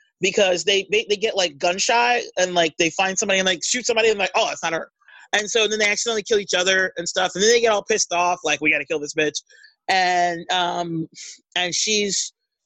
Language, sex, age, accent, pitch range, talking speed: English, male, 30-49, American, 165-210 Hz, 240 wpm